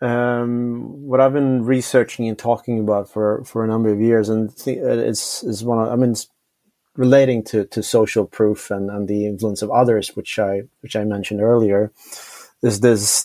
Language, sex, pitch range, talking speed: English, male, 105-120 Hz, 190 wpm